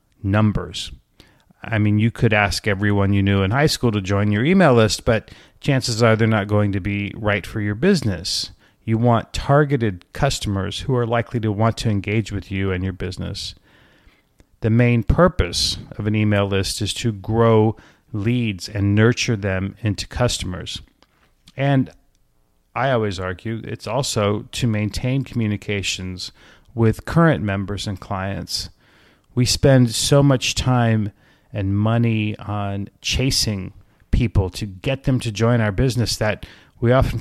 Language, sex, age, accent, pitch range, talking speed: English, male, 40-59, American, 100-115 Hz, 155 wpm